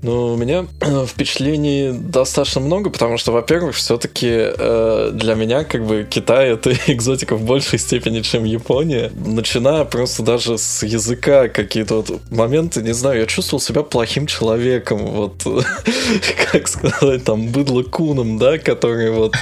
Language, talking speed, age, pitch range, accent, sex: Russian, 150 wpm, 20-39, 115-135 Hz, native, male